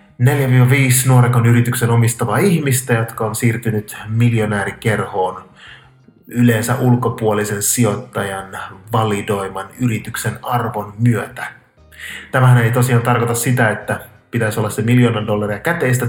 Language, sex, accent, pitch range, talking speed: Finnish, male, native, 105-125 Hz, 100 wpm